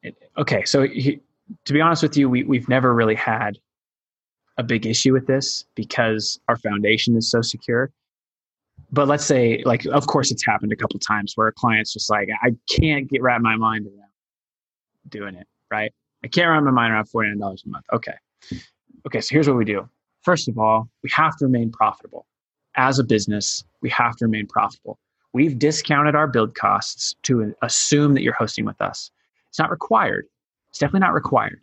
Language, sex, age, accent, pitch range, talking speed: English, male, 20-39, American, 110-135 Hz, 190 wpm